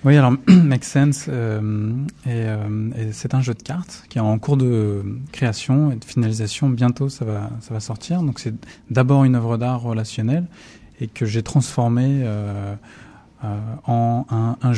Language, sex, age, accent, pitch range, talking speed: French, male, 20-39, French, 110-135 Hz, 185 wpm